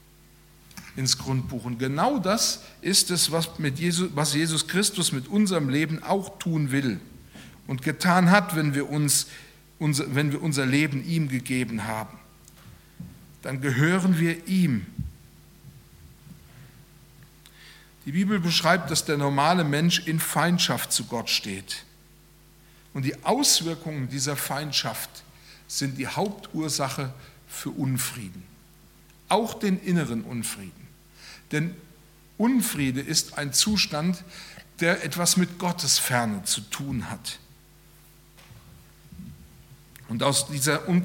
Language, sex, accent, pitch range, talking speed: German, male, German, 140-180 Hz, 115 wpm